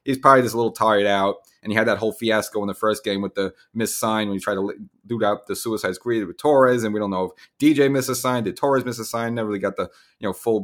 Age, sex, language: 30-49, male, English